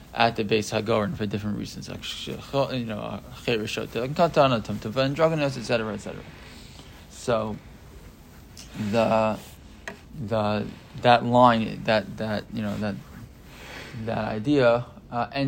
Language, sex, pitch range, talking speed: English, male, 110-135 Hz, 60 wpm